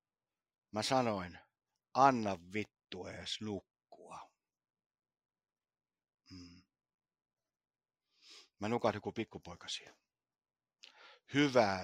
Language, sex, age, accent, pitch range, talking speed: Finnish, male, 60-79, native, 95-140 Hz, 60 wpm